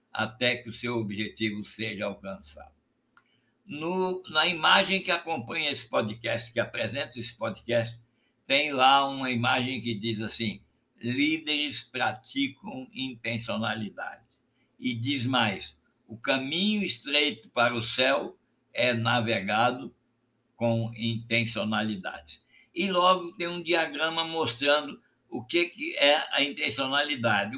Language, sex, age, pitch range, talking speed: Portuguese, male, 60-79, 115-145 Hz, 110 wpm